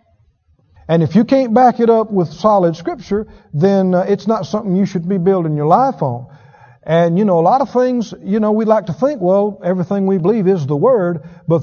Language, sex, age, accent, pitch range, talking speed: English, male, 50-69, American, 150-205 Hz, 220 wpm